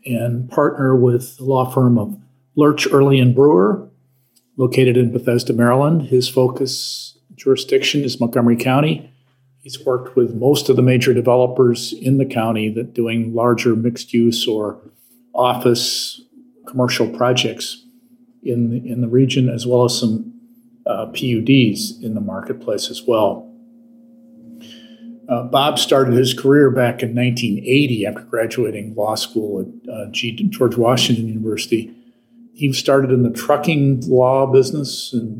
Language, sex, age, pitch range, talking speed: English, male, 50-69, 120-140 Hz, 135 wpm